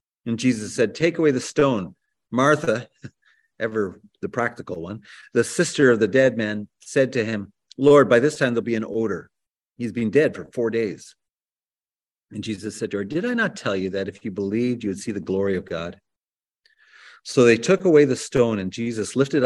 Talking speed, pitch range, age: 200 wpm, 100-130 Hz, 40-59